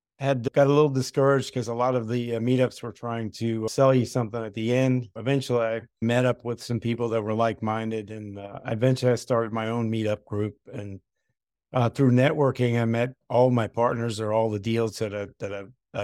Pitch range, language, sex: 110-125 Hz, English, male